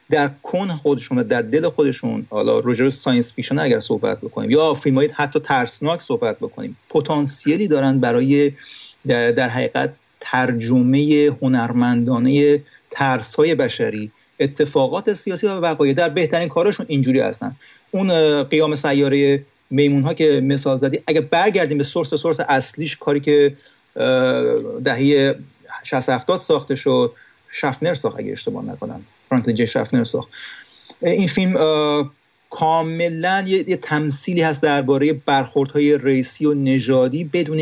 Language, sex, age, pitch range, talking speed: Persian, male, 40-59, 135-160 Hz, 125 wpm